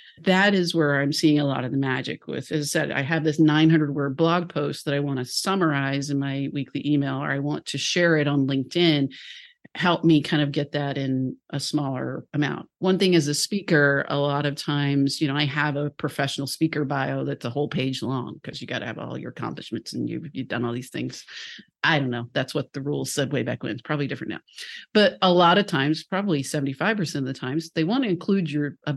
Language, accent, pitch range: English, American, 140-165 Hz